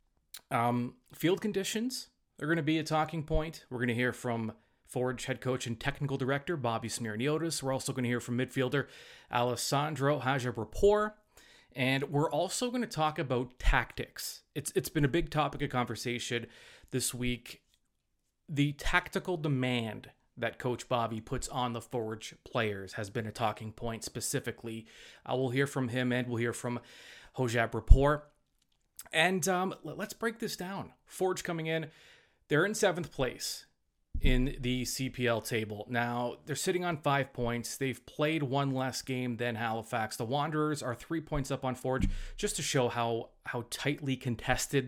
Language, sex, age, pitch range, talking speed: English, male, 30-49, 120-150 Hz, 165 wpm